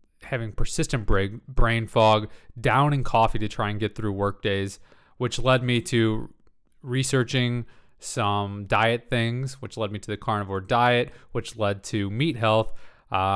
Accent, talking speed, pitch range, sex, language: American, 155 wpm, 100-120 Hz, male, English